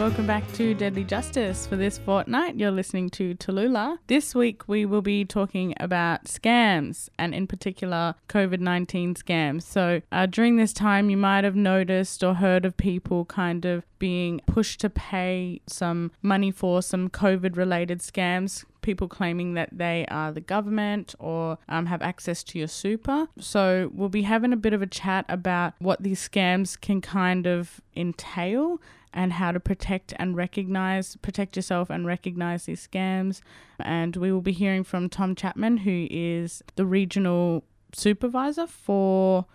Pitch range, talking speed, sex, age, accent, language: 175-195 Hz, 160 wpm, female, 20-39, Australian, English